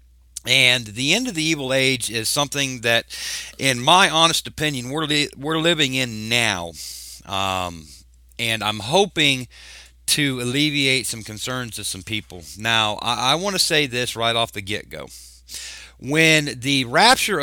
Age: 50-69